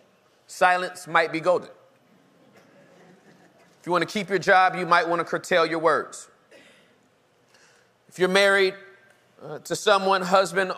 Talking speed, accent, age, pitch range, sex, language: 140 wpm, American, 30-49, 160-190 Hz, male, English